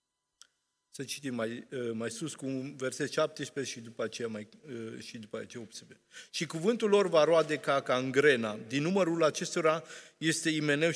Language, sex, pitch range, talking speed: Romanian, male, 125-175 Hz, 160 wpm